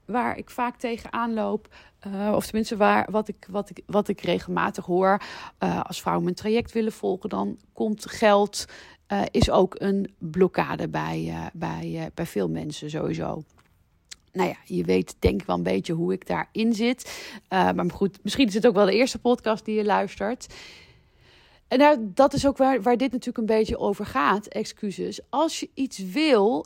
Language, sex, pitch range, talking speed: Dutch, female, 175-235 Hz, 175 wpm